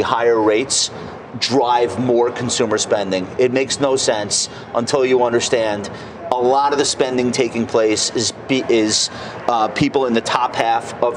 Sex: male